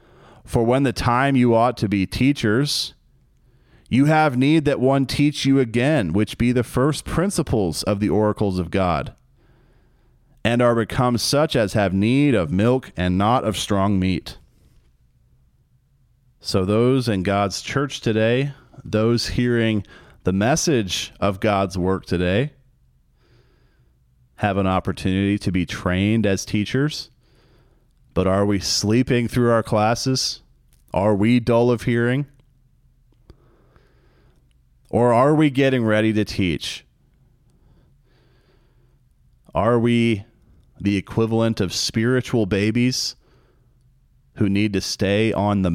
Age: 30-49